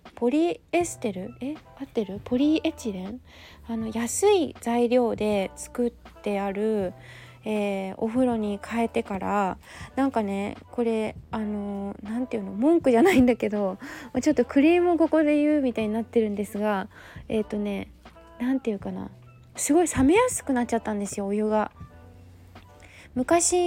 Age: 20-39